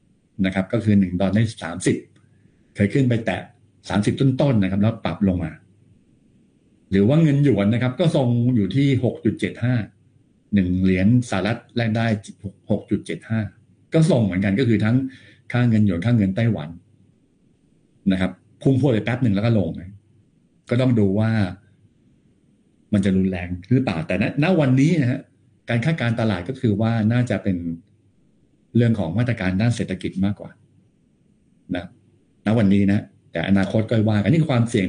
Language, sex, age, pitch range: Thai, male, 60-79, 95-120 Hz